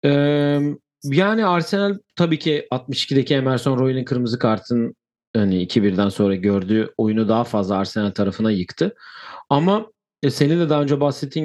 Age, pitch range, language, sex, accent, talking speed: 40-59, 110-145 Hz, Turkish, male, native, 145 wpm